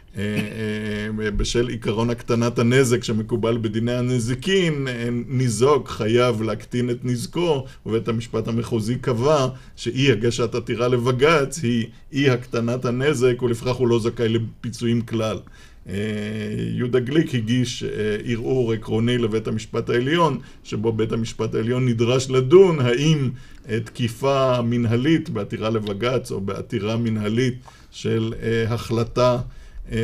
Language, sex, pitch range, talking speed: Hebrew, male, 115-125 Hz, 110 wpm